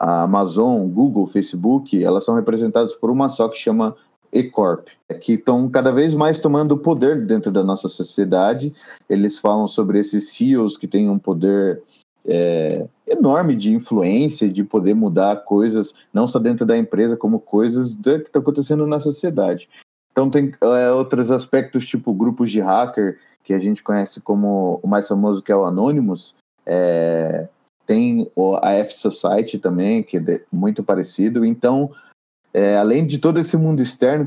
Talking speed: 160 wpm